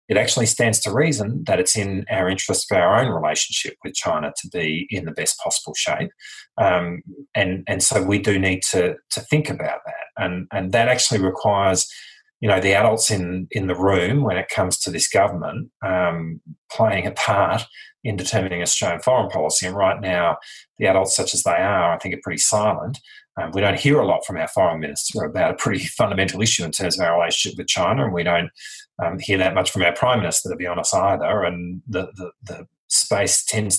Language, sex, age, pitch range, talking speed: English, male, 30-49, 95-120 Hz, 215 wpm